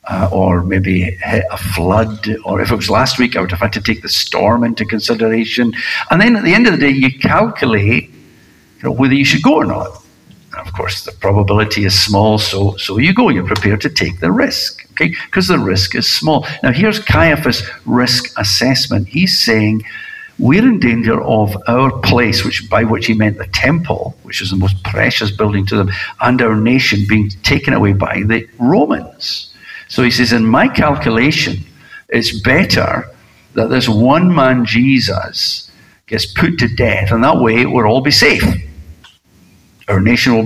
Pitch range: 100-125 Hz